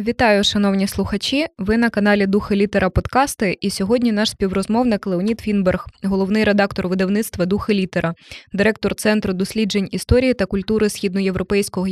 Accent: native